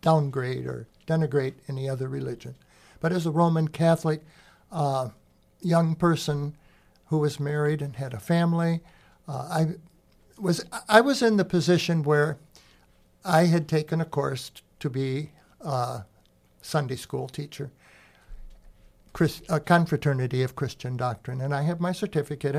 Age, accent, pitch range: 60-79, American, 135-170 Hz